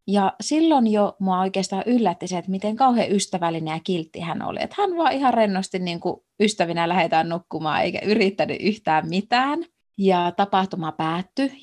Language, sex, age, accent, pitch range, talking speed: Finnish, female, 30-49, native, 180-260 Hz, 150 wpm